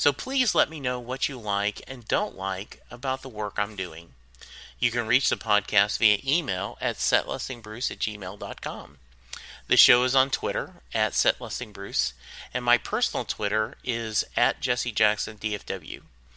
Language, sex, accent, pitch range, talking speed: English, male, American, 105-140 Hz, 150 wpm